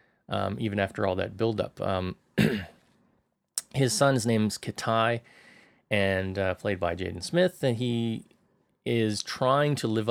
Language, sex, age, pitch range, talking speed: English, male, 30-49, 95-120 Hz, 135 wpm